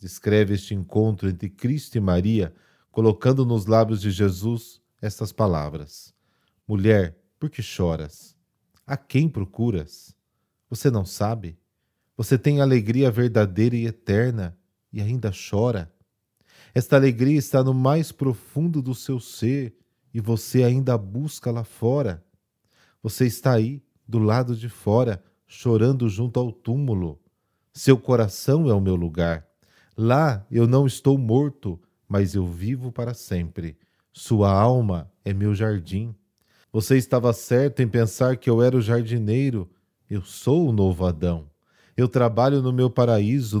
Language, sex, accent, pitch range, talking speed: Portuguese, male, Brazilian, 100-125 Hz, 140 wpm